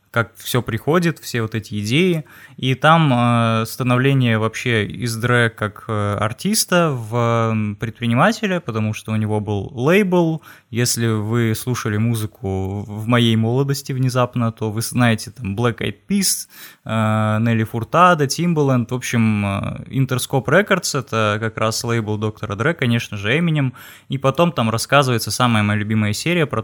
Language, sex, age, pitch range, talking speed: Russian, male, 20-39, 110-140 Hz, 150 wpm